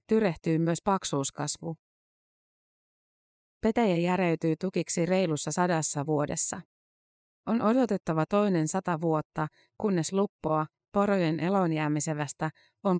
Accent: native